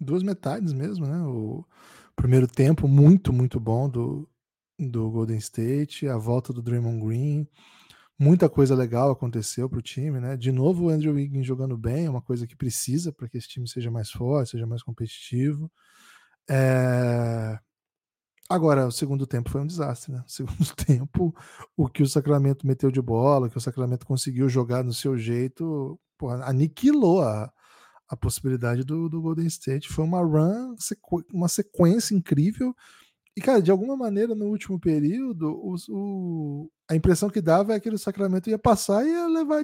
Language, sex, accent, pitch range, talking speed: Portuguese, male, Brazilian, 125-180 Hz, 170 wpm